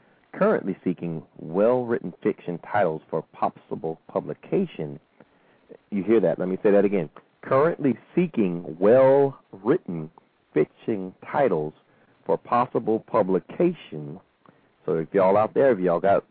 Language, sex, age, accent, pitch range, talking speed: English, male, 40-59, American, 85-115 Hz, 120 wpm